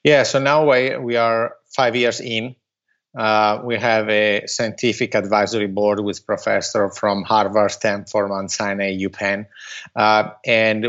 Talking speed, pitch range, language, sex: 130 wpm, 105-120 Hz, English, male